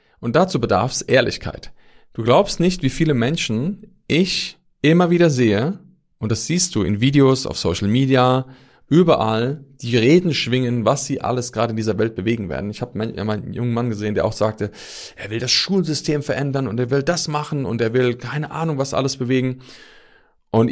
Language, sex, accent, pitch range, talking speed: German, male, German, 115-145 Hz, 190 wpm